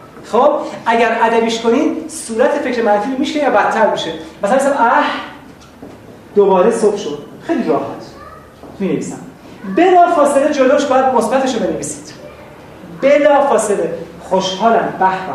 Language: Persian